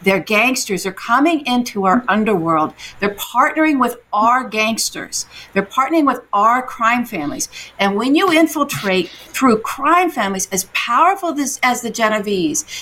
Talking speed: 145 wpm